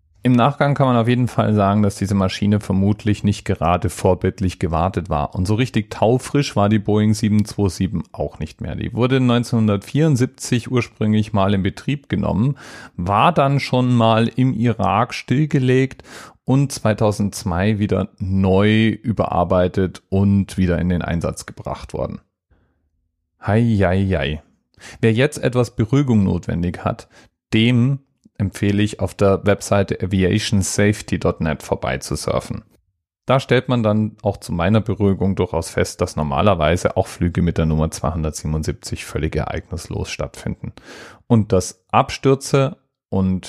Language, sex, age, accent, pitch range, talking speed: German, male, 40-59, German, 90-115 Hz, 130 wpm